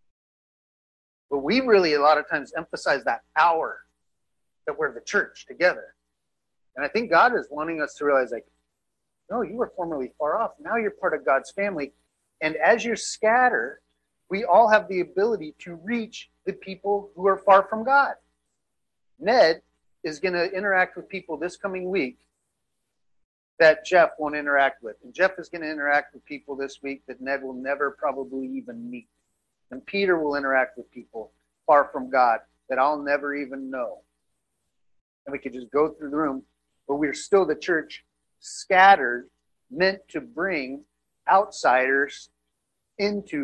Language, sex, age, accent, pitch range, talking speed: English, male, 40-59, American, 120-190 Hz, 165 wpm